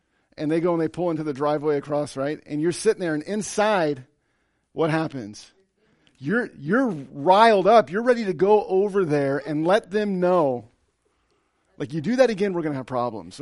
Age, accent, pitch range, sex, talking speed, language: 40-59, American, 140-195 Hz, male, 190 wpm, English